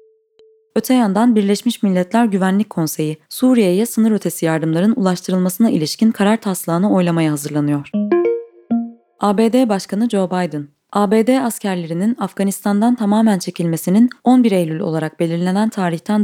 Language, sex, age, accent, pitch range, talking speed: Turkish, female, 20-39, native, 165-225 Hz, 110 wpm